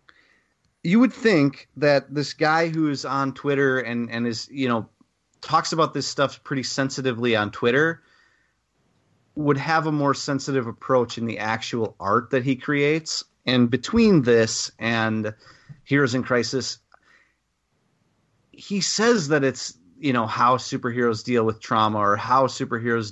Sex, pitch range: male, 115-140 Hz